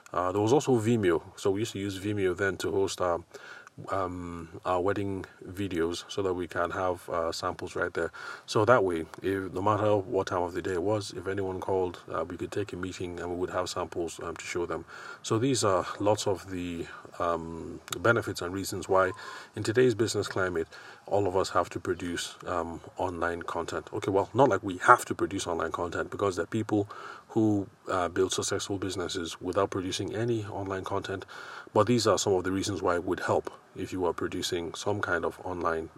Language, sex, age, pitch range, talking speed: English, male, 30-49, 90-105 Hz, 205 wpm